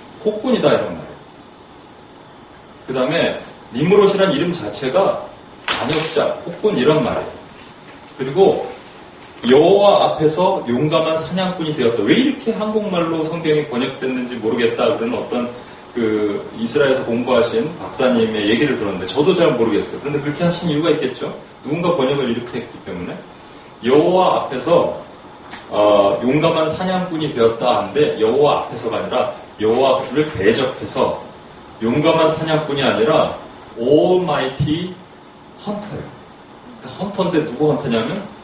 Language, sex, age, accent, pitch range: Korean, male, 30-49, native, 130-185 Hz